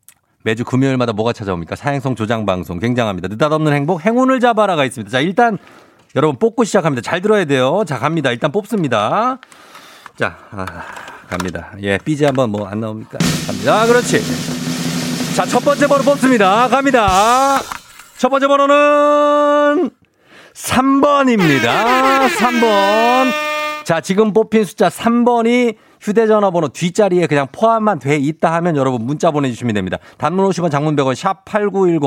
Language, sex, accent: Korean, male, native